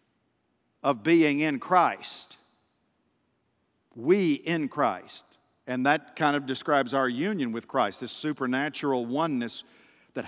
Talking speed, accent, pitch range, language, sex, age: 115 wpm, American, 145-190 Hz, English, male, 50-69